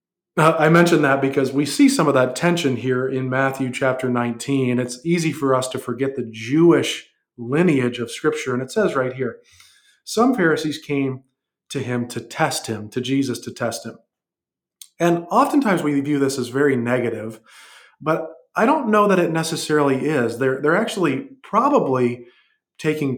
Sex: male